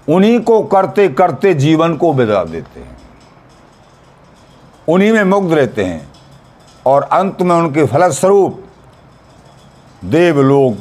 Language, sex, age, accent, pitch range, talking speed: Hindi, male, 50-69, native, 115-165 Hz, 110 wpm